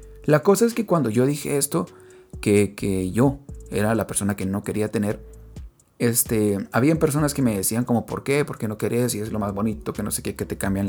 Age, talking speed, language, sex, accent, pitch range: 30-49, 230 wpm, English, male, Mexican, 105-135 Hz